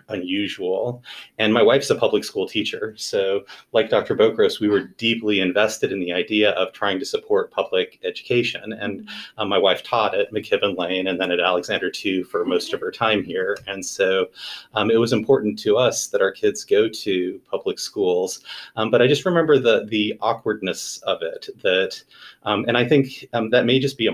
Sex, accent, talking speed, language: male, American, 200 wpm, English